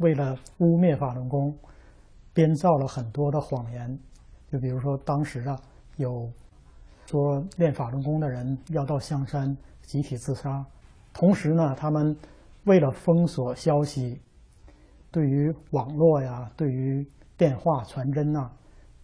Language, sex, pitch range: Chinese, male, 130-155 Hz